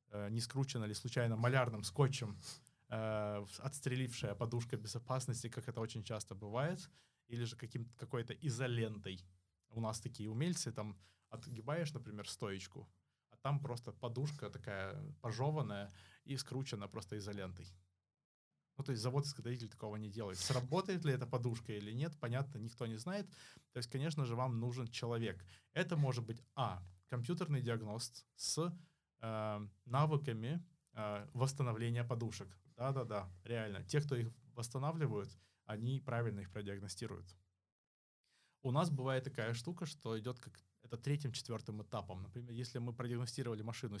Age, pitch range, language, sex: 20-39, 110-135 Hz, Russian, male